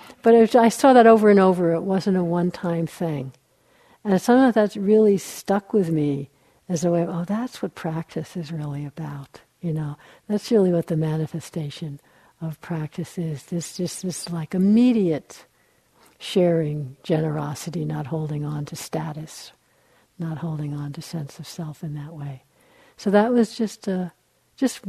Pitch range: 155-185 Hz